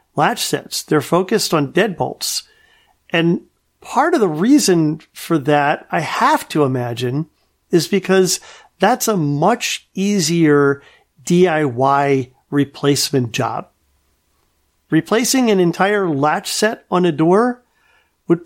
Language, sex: English, male